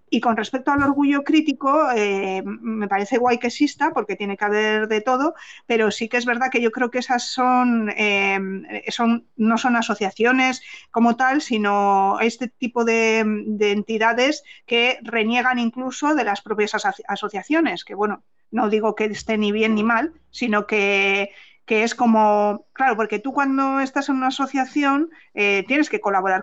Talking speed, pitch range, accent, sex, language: 175 wpm, 205-255 Hz, Spanish, female, Spanish